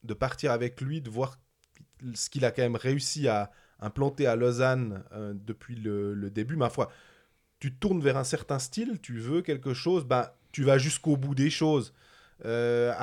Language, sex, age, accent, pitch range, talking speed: French, male, 20-39, French, 120-160 Hz, 190 wpm